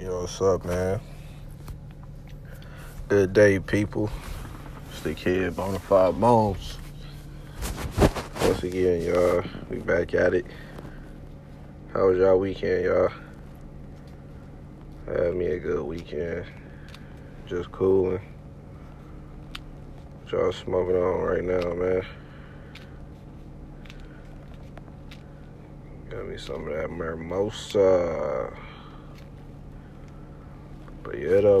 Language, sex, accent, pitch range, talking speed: English, male, American, 90-105 Hz, 85 wpm